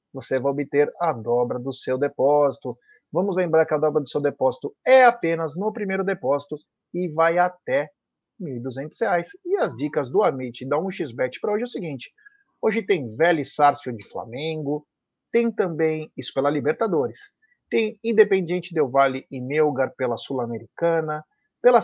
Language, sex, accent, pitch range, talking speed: Portuguese, male, Brazilian, 145-200 Hz, 165 wpm